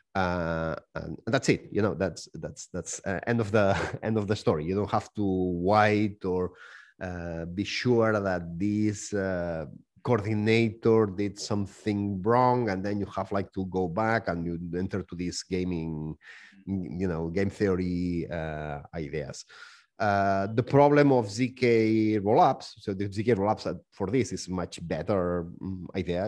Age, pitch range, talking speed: 30-49, 90-110 Hz, 160 wpm